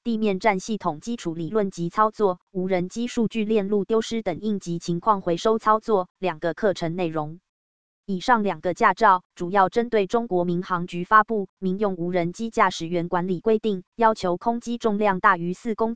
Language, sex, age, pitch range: Chinese, female, 20-39, 175-220 Hz